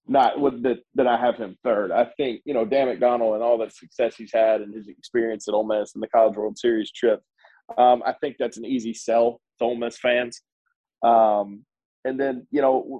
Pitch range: 115-145 Hz